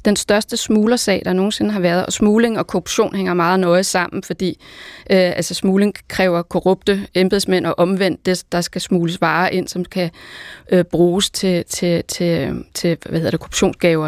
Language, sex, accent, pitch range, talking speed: Danish, female, native, 180-200 Hz, 185 wpm